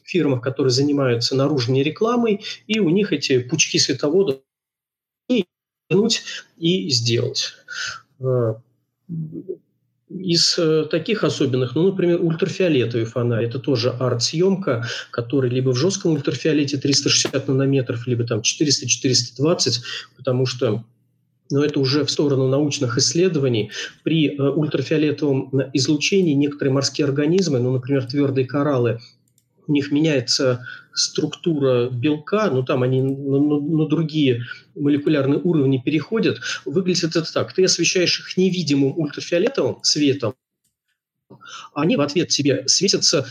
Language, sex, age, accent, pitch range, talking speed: Russian, male, 40-59, native, 130-165 Hz, 115 wpm